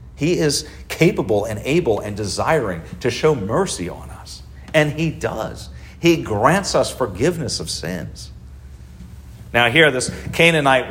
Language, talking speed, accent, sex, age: English, 140 wpm, American, male, 50-69